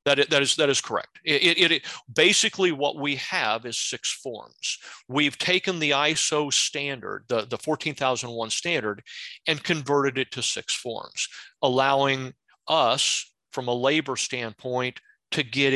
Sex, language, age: male, English, 40-59